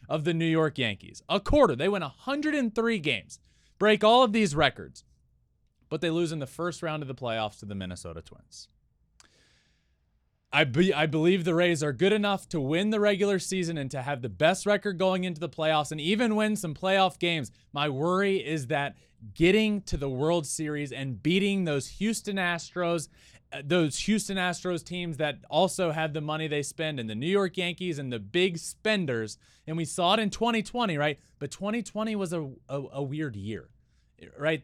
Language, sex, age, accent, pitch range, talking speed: English, male, 20-39, American, 140-195 Hz, 190 wpm